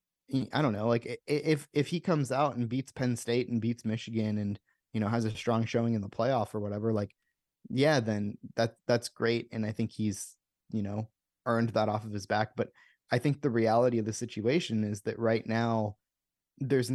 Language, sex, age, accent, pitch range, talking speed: English, male, 20-39, American, 110-130 Hz, 210 wpm